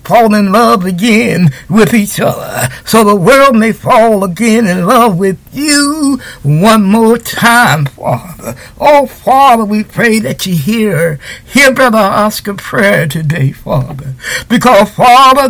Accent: American